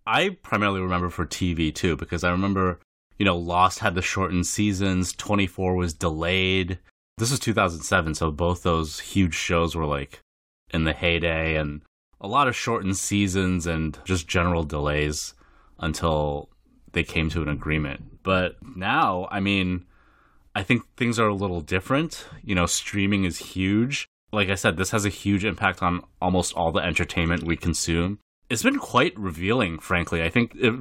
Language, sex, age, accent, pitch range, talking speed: English, male, 20-39, American, 80-95 Hz, 170 wpm